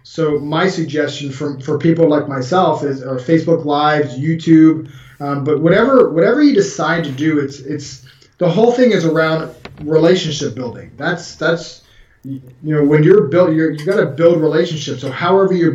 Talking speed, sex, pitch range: 175 wpm, male, 140-165 Hz